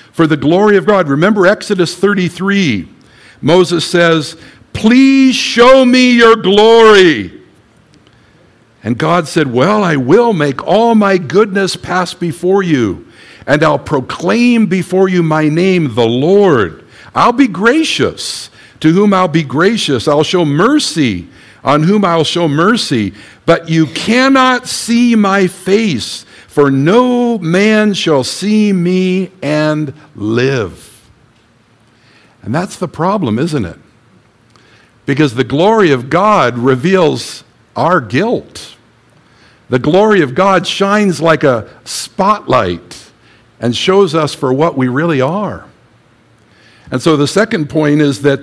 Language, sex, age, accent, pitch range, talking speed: English, male, 60-79, American, 130-200 Hz, 130 wpm